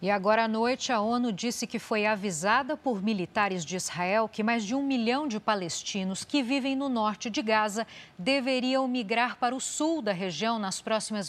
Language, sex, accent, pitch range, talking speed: Portuguese, female, Brazilian, 200-250 Hz, 190 wpm